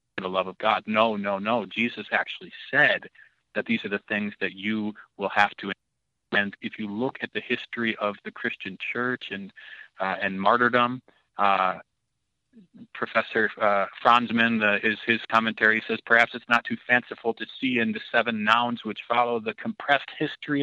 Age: 30-49